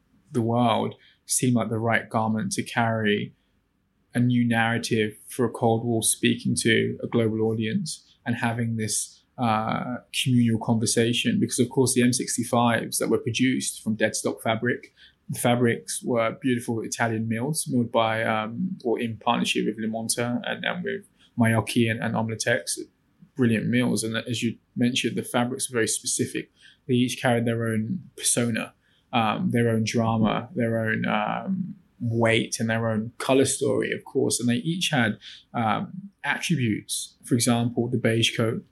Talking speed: 155 wpm